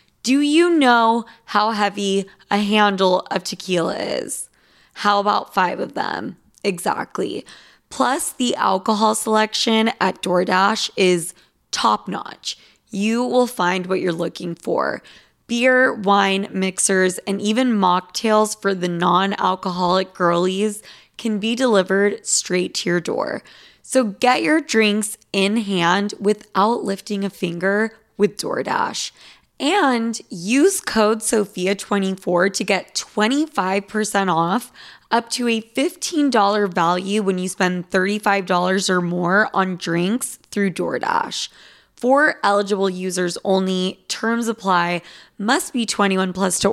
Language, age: English, 20-39